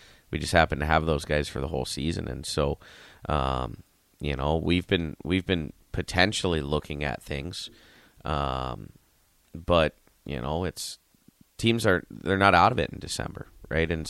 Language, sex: English, male